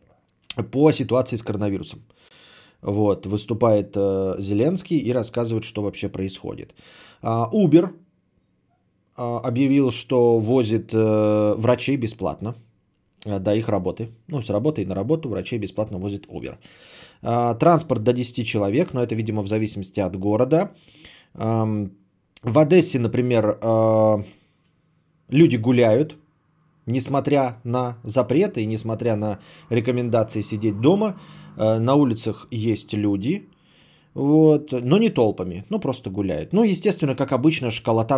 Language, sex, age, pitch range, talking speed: Bulgarian, male, 20-39, 105-145 Hz, 125 wpm